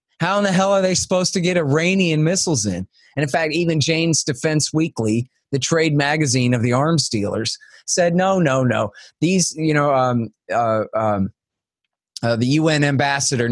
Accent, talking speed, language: American, 180 wpm, English